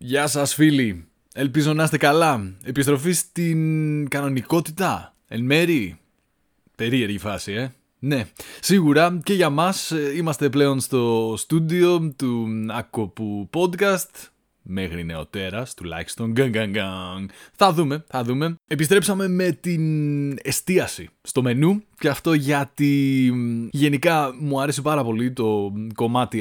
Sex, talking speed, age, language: male, 115 wpm, 20-39, Greek